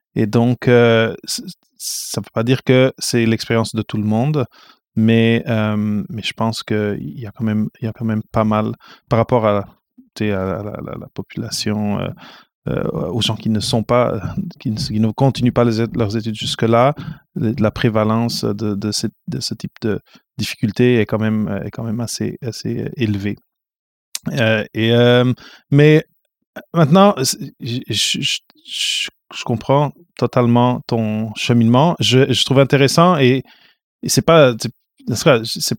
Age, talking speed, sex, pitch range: 30-49, 170 wpm, male, 110-135 Hz